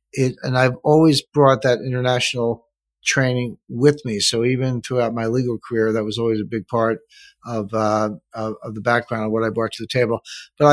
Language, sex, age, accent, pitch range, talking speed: English, male, 50-69, American, 110-130 Hz, 200 wpm